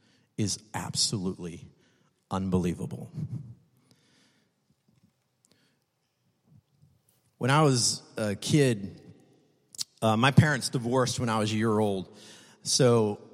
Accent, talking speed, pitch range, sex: American, 85 wpm, 120-155 Hz, male